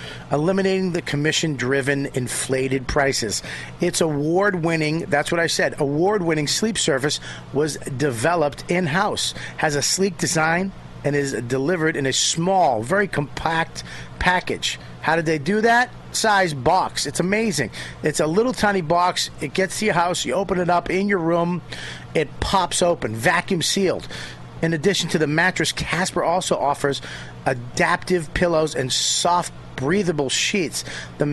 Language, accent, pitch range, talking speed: English, American, 130-185 Hz, 145 wpm